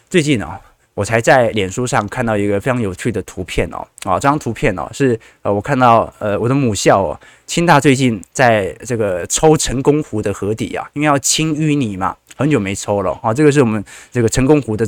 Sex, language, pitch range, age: male, Chinese, 110-155 Hz, 20-39